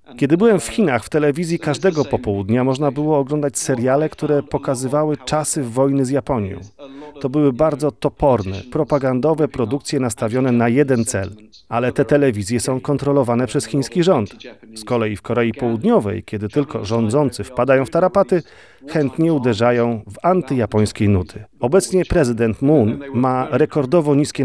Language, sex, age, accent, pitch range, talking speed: Polish, male, 40-59, native, 115-150 Hz, 140 wpm